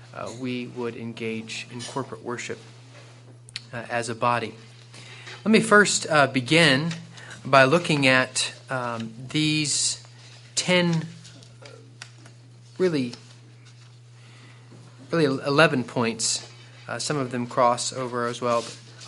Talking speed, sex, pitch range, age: 110 wpm, male, 120-135 Hz, 30-49